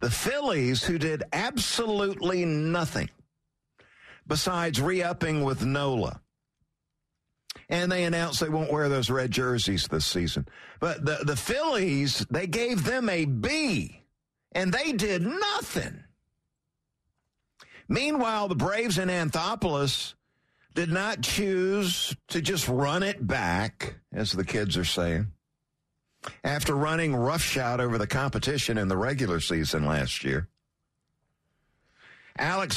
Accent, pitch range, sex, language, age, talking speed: American, 125-185 Hz, male, English, 50-69, 120 wpm